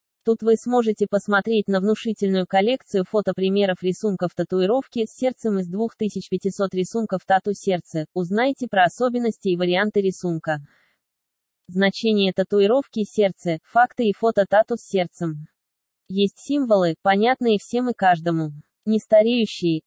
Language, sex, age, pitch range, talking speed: Russian, female, 20-39, 185-220 Hz, 120 wpm